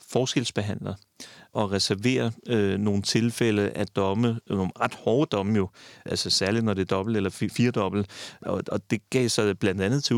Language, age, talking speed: Danish, 30-49, 175 wpm